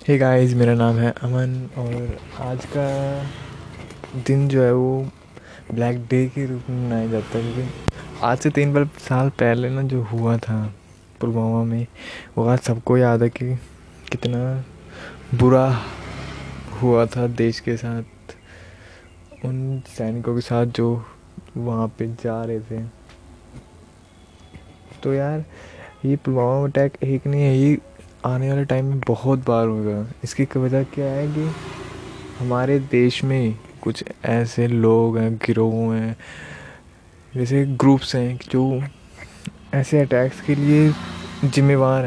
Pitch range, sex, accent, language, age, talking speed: 115-135 Hz, male, native, Hindi, 20-39, 135 wpm